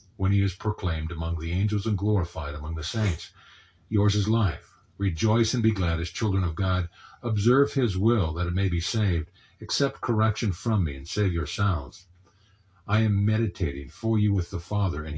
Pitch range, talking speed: 85-110 Hz, 185 wpm